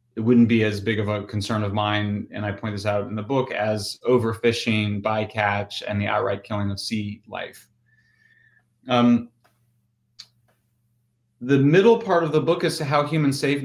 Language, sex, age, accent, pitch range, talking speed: English, male, 30-49, American, 105-120 Hz, 175 wpm